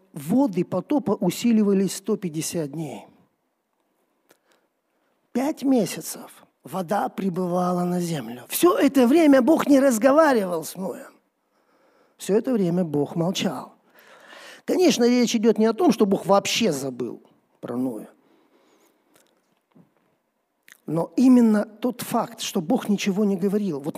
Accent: native